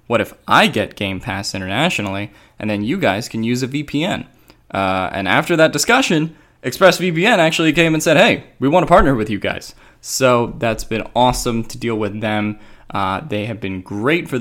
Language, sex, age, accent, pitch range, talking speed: English, male, 20-39, American, 105-135 Hz, 195 wpm